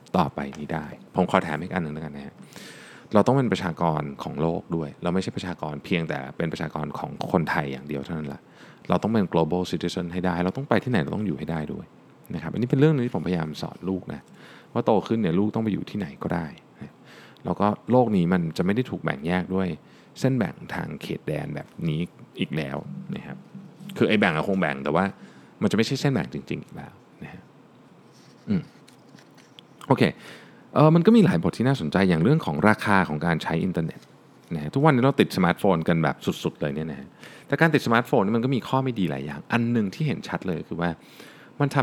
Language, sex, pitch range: Thai, male, 80-125 Hz